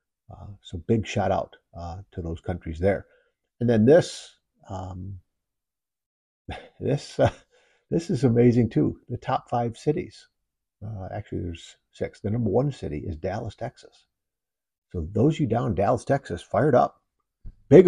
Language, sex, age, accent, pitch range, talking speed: English, male, 50-69, American, 90-115 Hz, 155 wpm